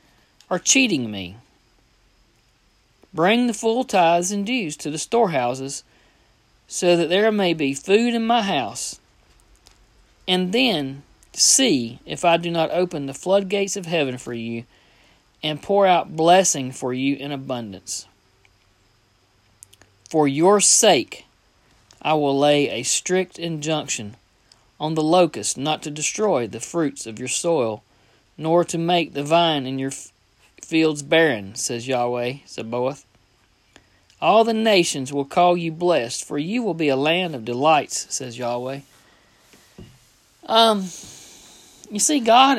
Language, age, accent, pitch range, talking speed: English, 40-59, American, 120-180 Hz, 135 wpm